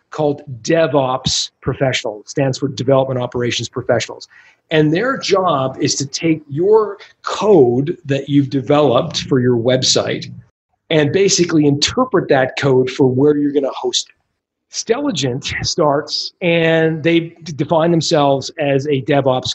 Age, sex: 40-59, male